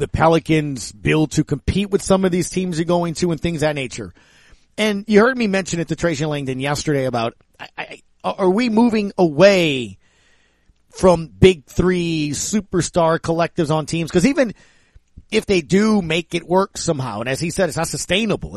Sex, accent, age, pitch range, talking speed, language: male, American, 40-59, 155-210 Hz, 185 wpm, English